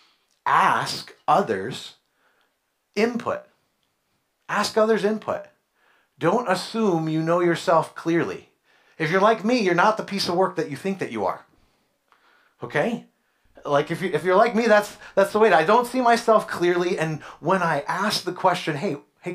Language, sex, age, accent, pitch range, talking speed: English, male, 30-49, American, 145-205 Hz, 165 wpm